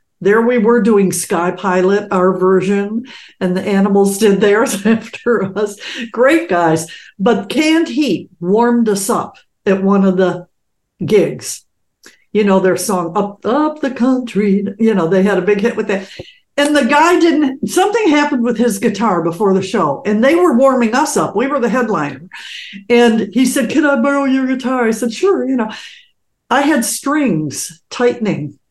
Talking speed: 175 wpm